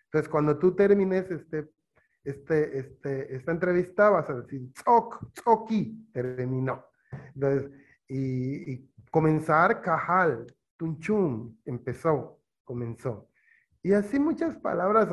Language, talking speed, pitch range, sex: Spanish, 105 wpm, 140-200 Hz, male